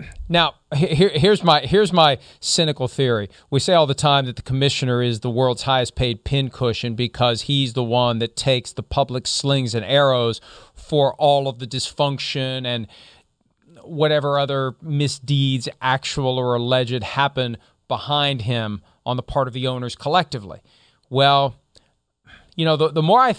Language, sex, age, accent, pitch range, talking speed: English, male, 40-59, American, 130-180 Hz, 160 wpm